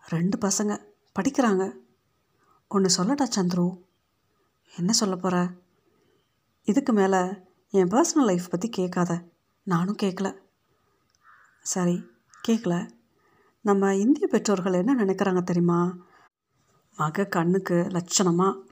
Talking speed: 105 wpm